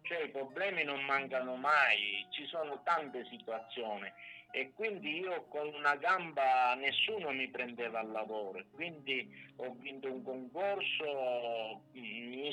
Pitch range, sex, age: 130-165 Hz, male, 50-69